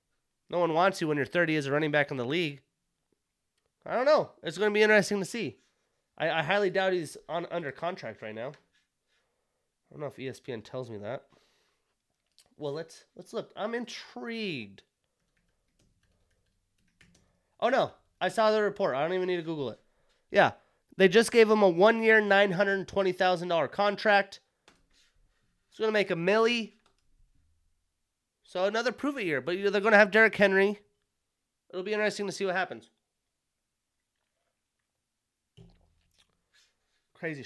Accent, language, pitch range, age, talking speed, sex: American, English, 150-210 Hz, 30-49, 155 wpm, male